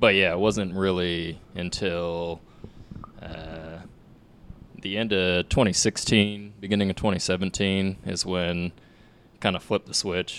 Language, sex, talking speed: English, male, 120 wpm